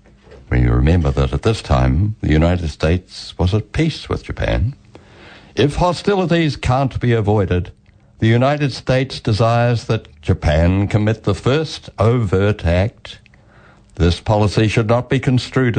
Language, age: English, 60-79